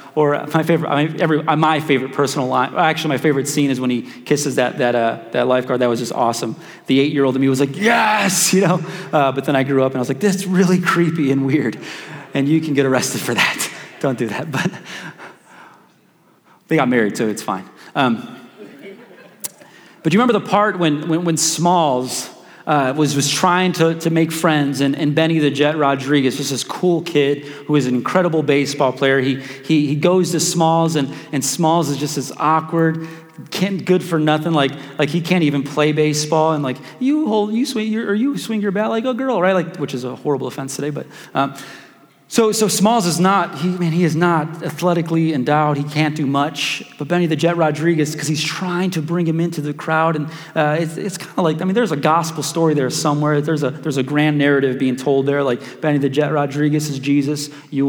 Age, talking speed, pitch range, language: 30-49, 220 wpm, 140-175 Hz, English